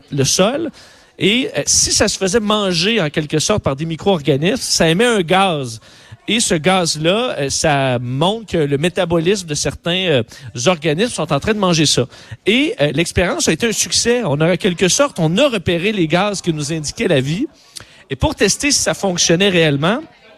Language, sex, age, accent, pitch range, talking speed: French, male, 40-59, Canadian, 155-210 Hz, 195 wpm